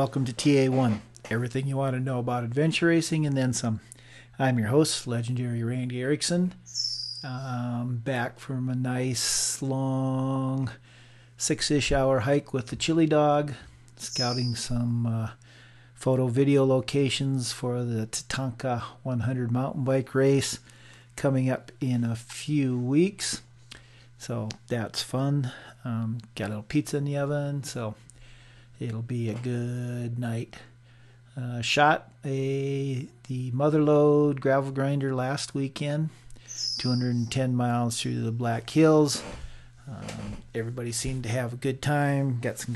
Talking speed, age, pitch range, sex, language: 130 wpm, 40-59, 120-135 Hz, male, English